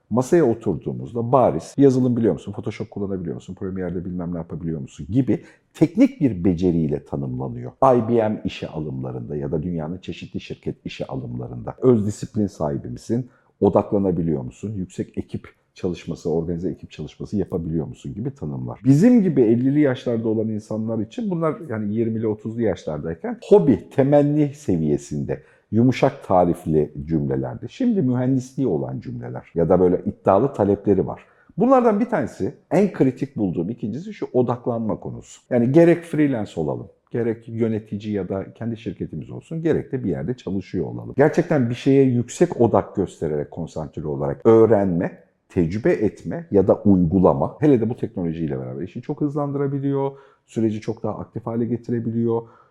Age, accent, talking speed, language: 50-69, native, 145 wpm, Turkish